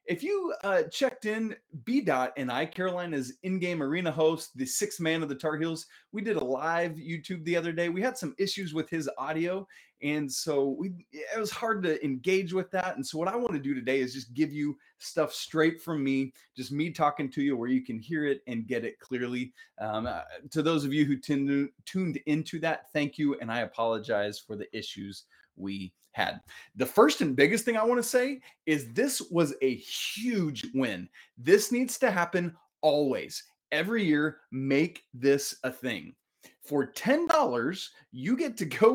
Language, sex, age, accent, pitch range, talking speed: English, male, 30-49, American, 135-205 Hz, 195 wpm